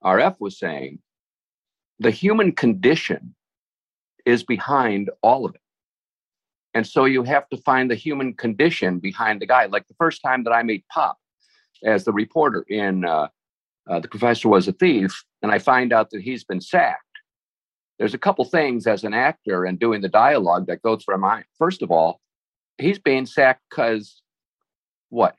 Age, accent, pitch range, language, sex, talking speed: 50-69, American, 100-140 Hz, English, male, 175 wpm